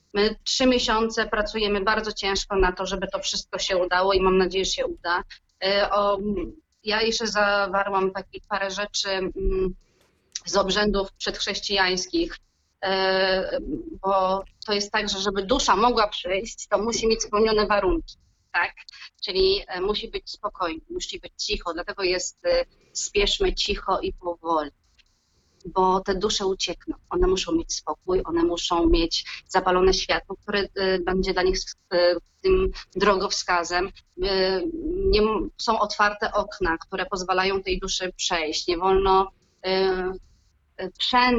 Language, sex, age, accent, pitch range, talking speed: Polish, female, 30-49, native, 185-210 Hz, 130 wpm